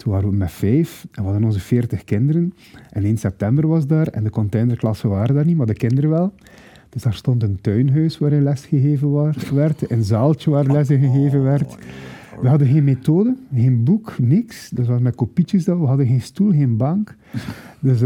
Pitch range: 110-145 Hz